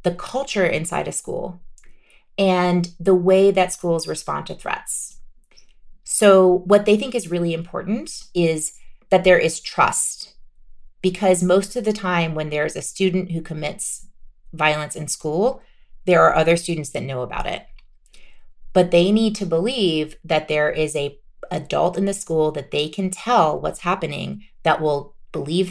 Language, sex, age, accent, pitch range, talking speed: English, female, 30-49, American, 155-195 Hz, 160 wpm